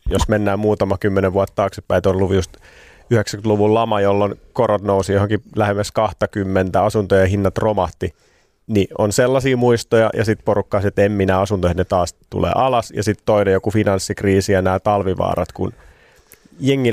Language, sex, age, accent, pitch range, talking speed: Finnish, male, 30-49, native, 100-115 Hz, 155 wpm